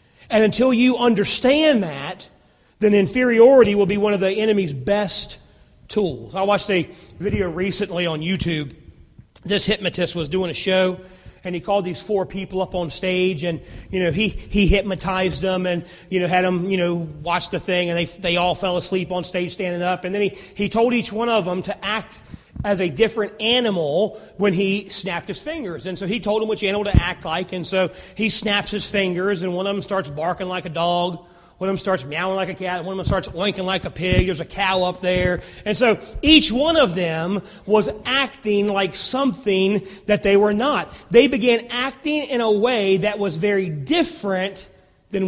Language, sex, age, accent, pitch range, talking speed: English, male, 30-49, American, 180-210 Hz, 205 wpm